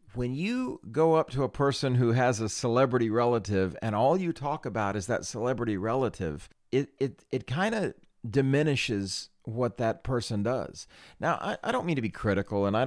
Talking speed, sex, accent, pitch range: 190 wpm, male, American, 95-125 Hz